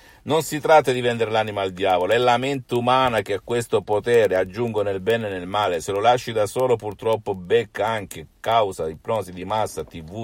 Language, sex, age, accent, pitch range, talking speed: Italian, male, 50-69, native, 95-130 Hz, 210 wpm